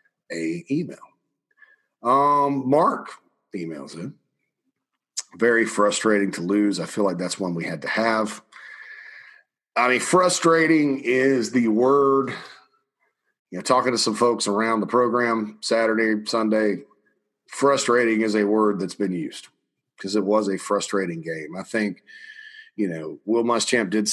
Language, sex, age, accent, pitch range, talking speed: English, male, 40-59, American, 105-135 Hz, 140 wpm